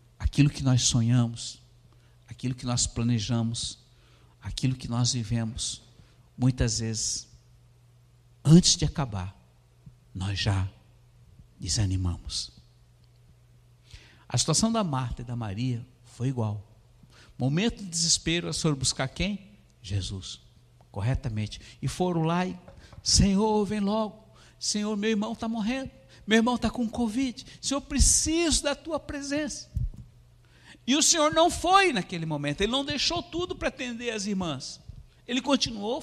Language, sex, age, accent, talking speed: Portuguese, male, 60-79, Brazilian, 130 wpm